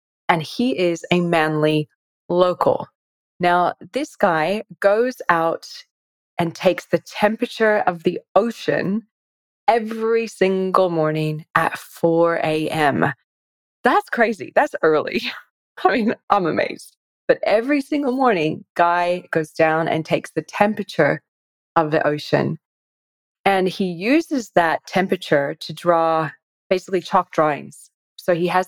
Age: 20-39